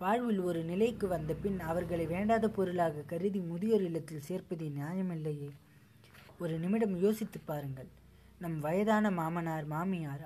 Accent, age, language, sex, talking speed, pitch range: native, 20-39, Tamil, female, 125 wpm, 155-195 Hz